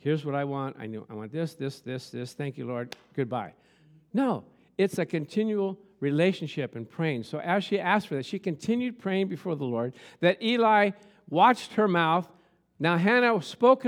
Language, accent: English, American